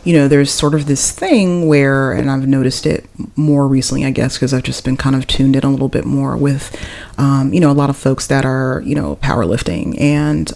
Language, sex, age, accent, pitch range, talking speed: English, female, 30-49, American, 130-155 Hz, 240 wpm